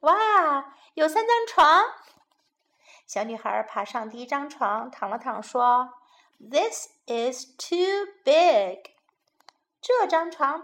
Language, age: Chinese, 50-69